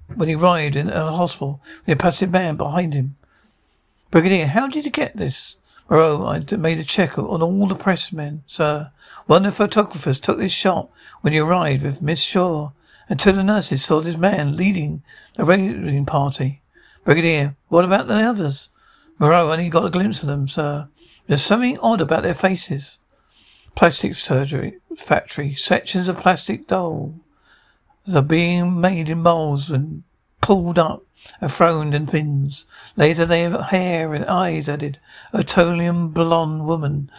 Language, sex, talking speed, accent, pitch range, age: English, male, 165 wpm, British, 150-185 Hz, 60-79